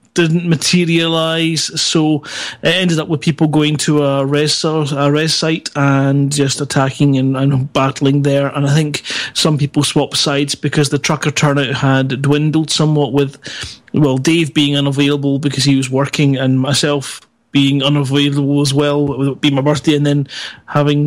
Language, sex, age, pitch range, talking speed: English, male, 30-49, 140-170 Hz, 170 wpm